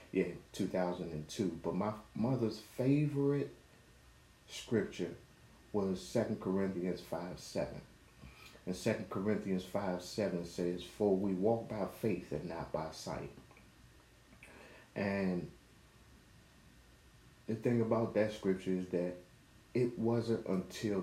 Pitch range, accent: 75-110 Hz, American